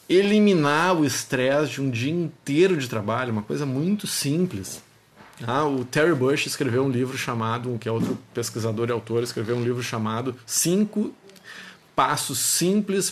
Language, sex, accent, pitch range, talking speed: Portuguese, male, Brazilian, 120-155 Hz, 155 wpm